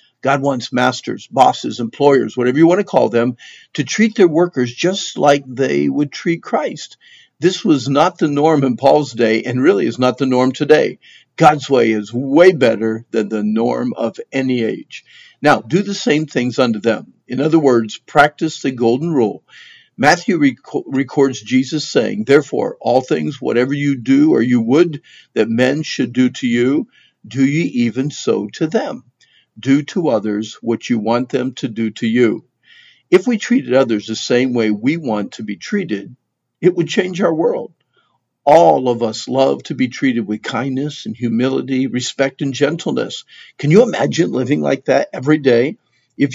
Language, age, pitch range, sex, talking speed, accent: English, 50-69, 120-160 Hz, male, 175 wpm, American